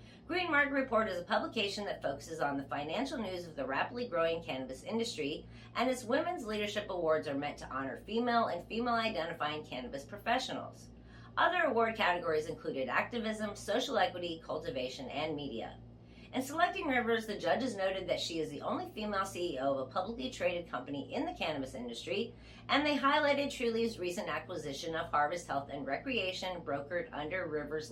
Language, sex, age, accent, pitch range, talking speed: English, female, 30-49, American, 155-240 Hz, 170 wpm